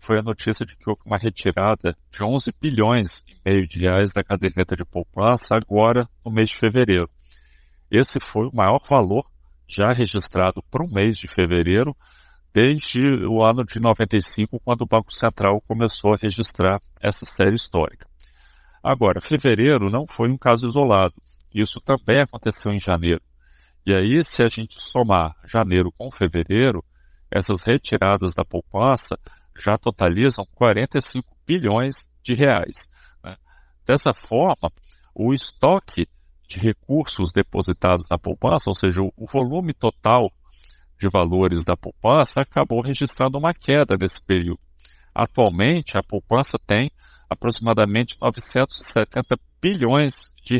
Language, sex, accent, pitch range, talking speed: Portuguese, male, Brazilian, 90-120 Hz, 135 wpm